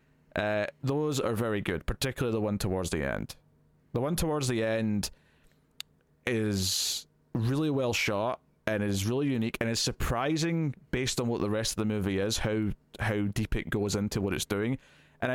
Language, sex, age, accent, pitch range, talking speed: English, male, 20-39, British, 105-145 Hz, 180 wpm